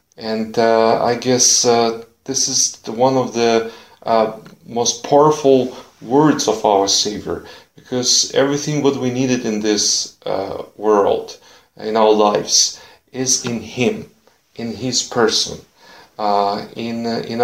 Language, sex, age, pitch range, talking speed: Ukrainian, male, 40-59, 110-140 Hz, 140 wpm